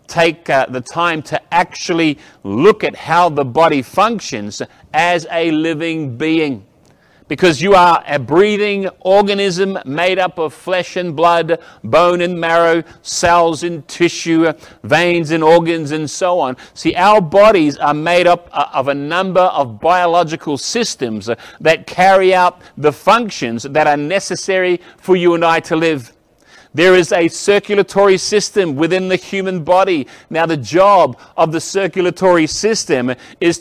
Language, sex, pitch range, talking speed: English, male, 155-185 Hz, 150 wpm